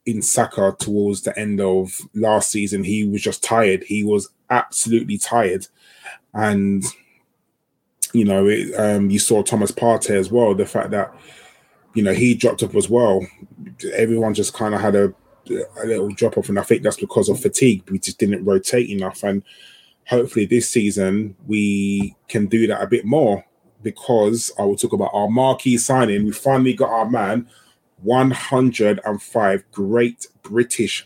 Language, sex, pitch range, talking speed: English, male, 105-125 Hz, 165 wpm